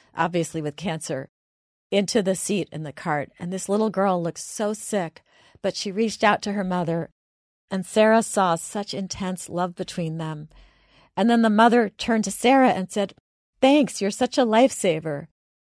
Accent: American